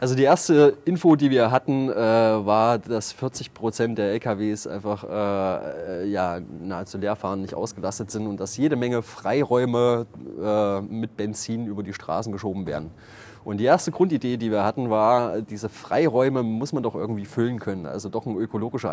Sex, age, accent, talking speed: male, 30-49, German, 180 wpm